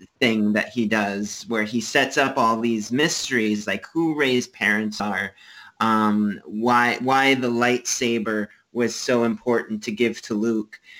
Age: 30-49